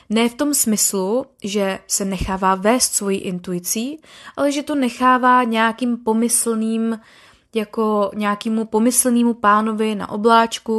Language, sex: Czech, female